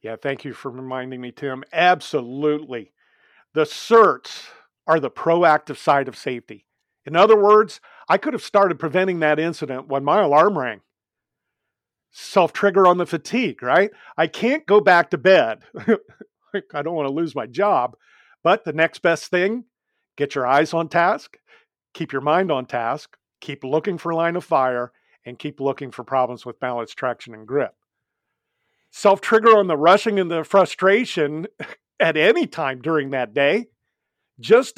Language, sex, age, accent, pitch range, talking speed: English, male, 50-69, American, 140-200 Hz, 160 wpm